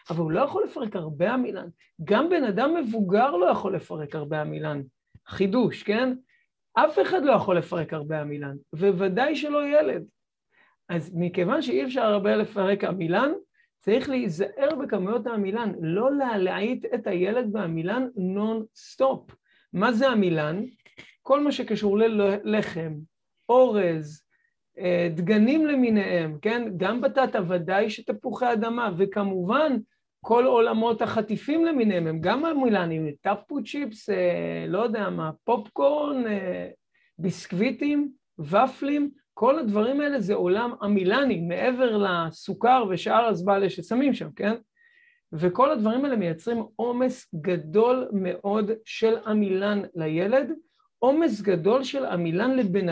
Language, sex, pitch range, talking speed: Hebrew, male, 185-255 Hz, 120 wpm